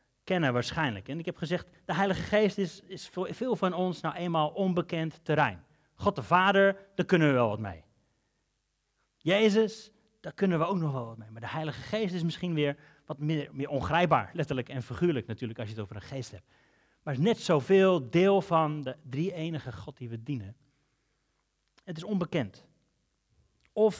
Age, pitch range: 30-49, 135-180 Hz